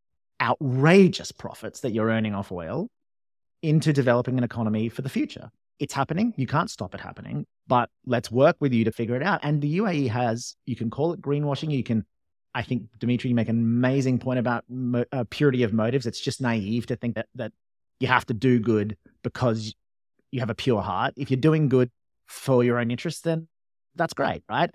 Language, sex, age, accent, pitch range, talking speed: English, male, 30-49, Australian, 110-135 Hz, 205 wpm